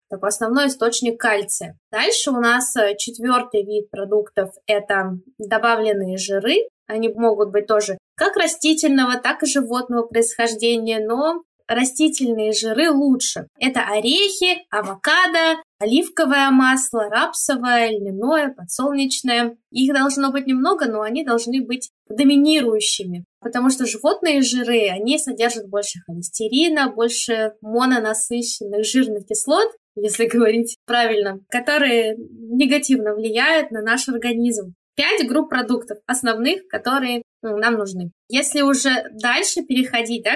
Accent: native